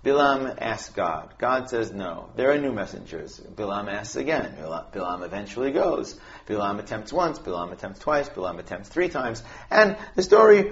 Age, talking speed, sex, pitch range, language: 40-59, 160 wpm, male, 110-160 Hz, English